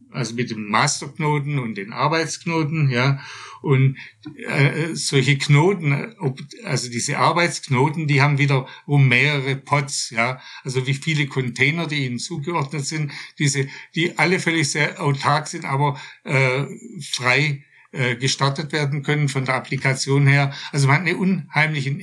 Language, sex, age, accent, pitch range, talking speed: German, male, 60-79, German, 135-150 Hz, 145 wpm